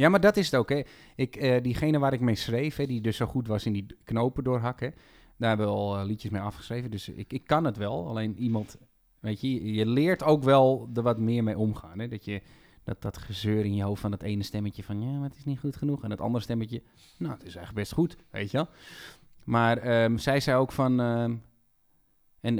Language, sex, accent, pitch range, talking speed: Dutch, male, Dutch, 110-135 Hz, 250 wpm